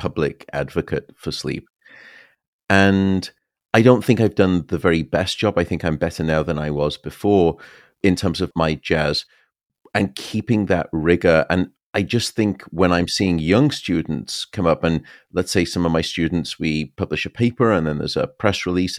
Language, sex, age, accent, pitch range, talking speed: English, male, 30-49, British, 80-100 Hz, 190 wpm